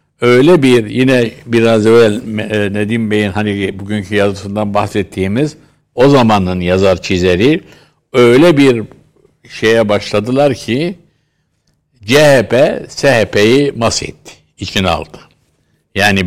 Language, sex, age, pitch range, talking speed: Turkish, male, 60-79, 100-125 Hz, 95 wpm